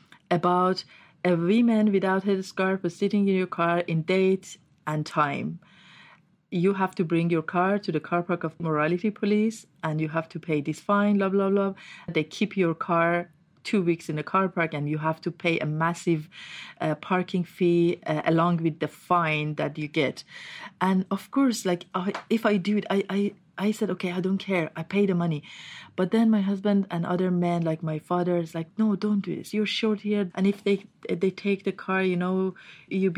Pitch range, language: 165-195 Hz, English